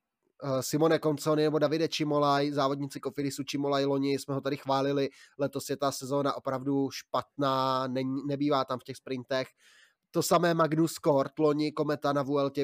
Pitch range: 130-150 Hz